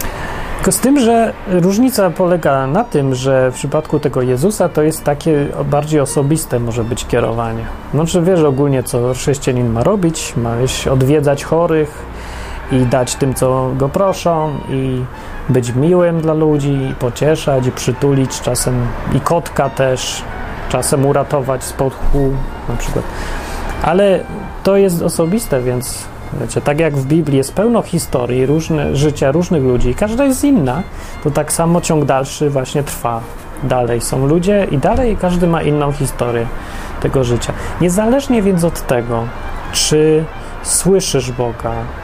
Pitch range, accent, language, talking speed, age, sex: 125-160 Hz, native, Polish, 145 wpm, 30-49, male